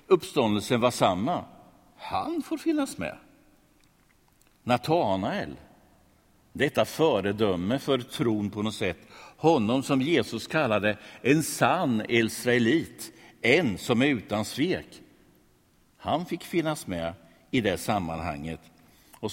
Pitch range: 95-145 Hz